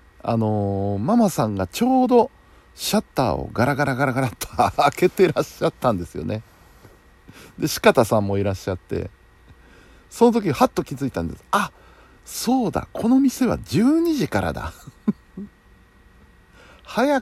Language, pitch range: Japanese, 90-145 Hz